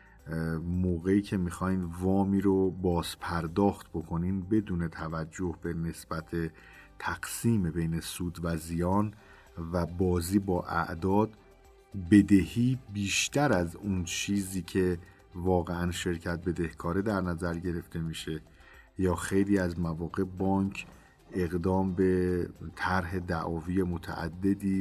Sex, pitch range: male, 85-100 Hz